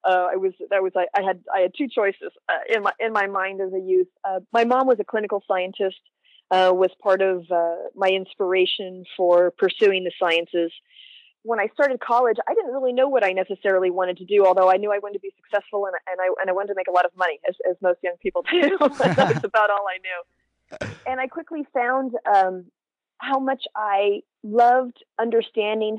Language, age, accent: English, 30-49, American